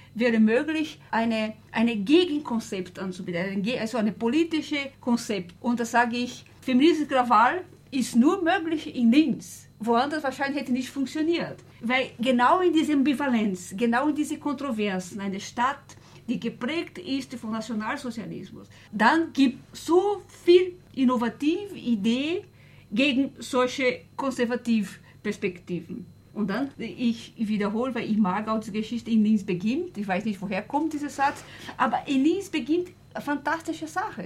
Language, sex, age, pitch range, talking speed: German, female, 50-69, 220-290 Hz, 140 wpm